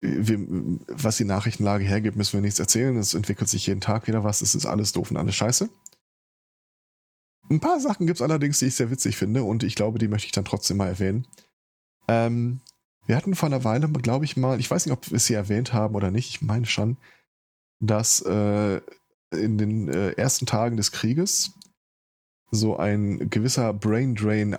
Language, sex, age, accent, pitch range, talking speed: German, male, 20-39, German, 100-130 Hz, 195 wpm